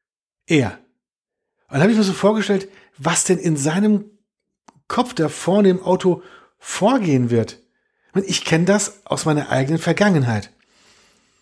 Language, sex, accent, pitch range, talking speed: German, male, German, 145-200 Hz, 130 wpm